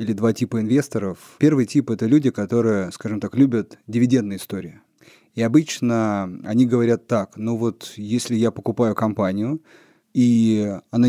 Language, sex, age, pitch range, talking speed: Russian, male, 30-49, 110-140 Hz, 145 wpm